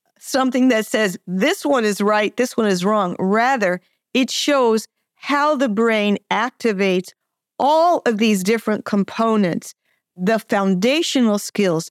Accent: American